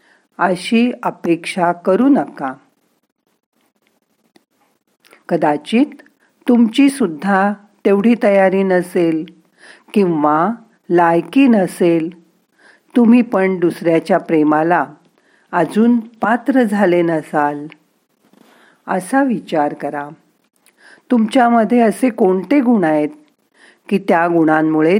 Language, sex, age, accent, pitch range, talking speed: Marathi, female, 50-69, native, 160-225 Hz, 75 wpm